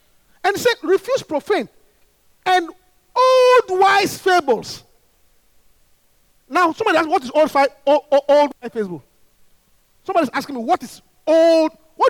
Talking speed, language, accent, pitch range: 135 wpm, English, Nigerian, 310-465 Hz